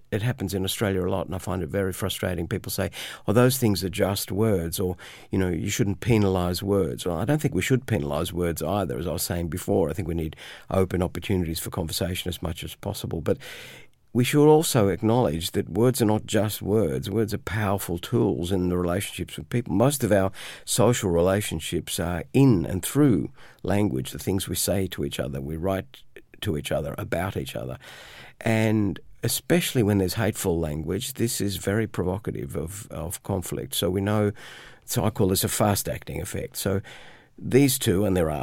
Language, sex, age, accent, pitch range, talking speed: English, male, 50-69, Australian, 90-110 Hz, 200 wpm